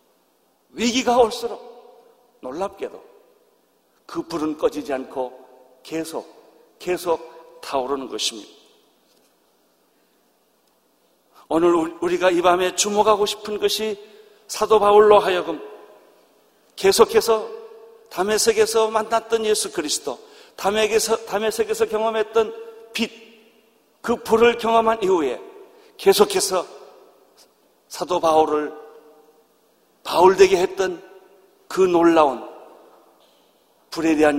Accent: native